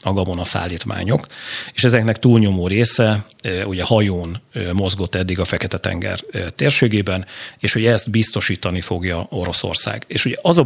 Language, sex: Hungarian, male